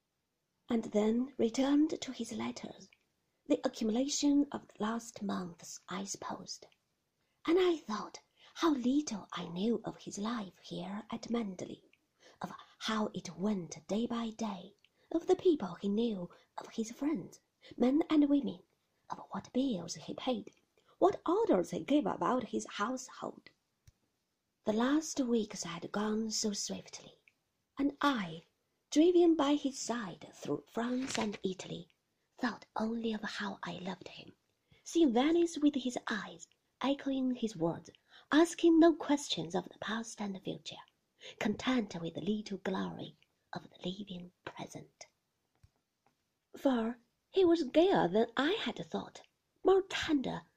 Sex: female